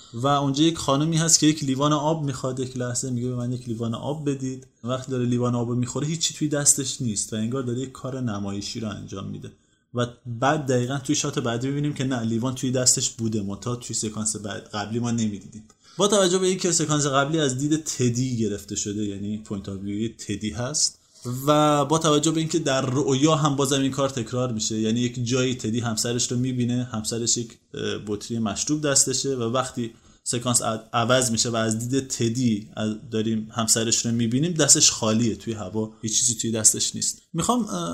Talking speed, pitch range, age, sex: 195 wpm, 110-140 Hz, 20-39, male